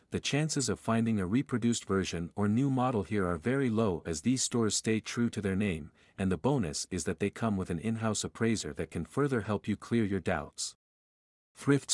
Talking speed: 210 wpm